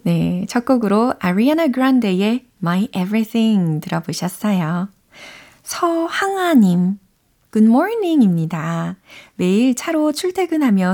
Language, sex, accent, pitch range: Korean, female, native, 175-235 Hz